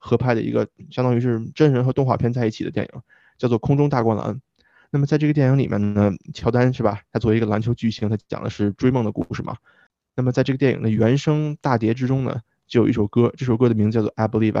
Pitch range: 110-130 Hz